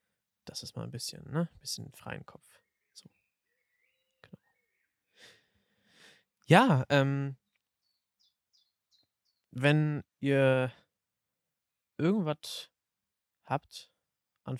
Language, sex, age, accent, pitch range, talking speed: German, male, 20-39, German, 110-135 Hz, 80 wpm